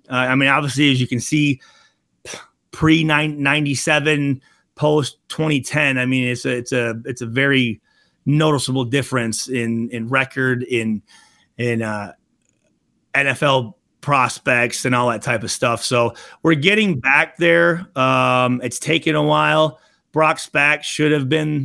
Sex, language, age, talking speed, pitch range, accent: male, English, 30-49, 140 wpm, 120-155 Hz, American